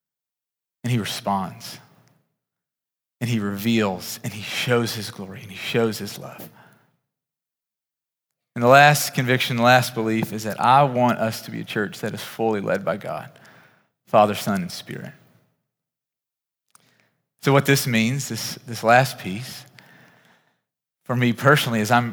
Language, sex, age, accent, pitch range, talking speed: English, male, 30-49, American, 110-135 Hz, 150 wpm